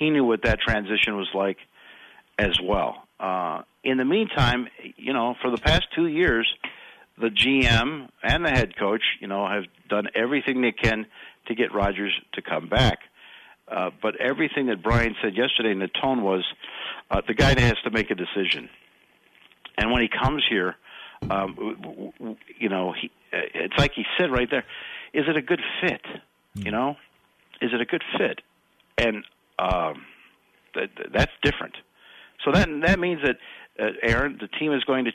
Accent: American